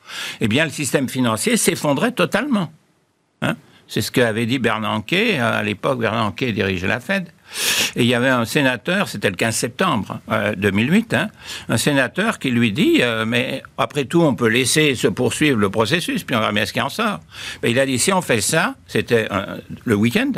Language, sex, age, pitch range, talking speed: French, male, 60-79, 125-180 Hz, 195 wpm